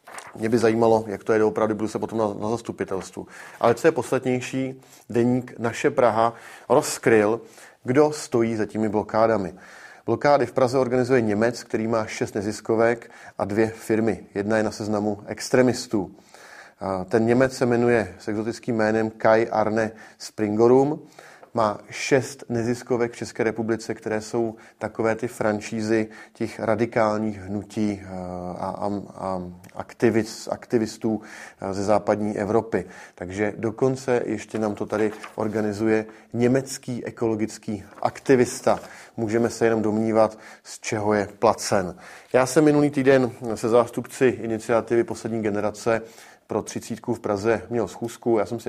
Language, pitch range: Czech, 105-120 Hz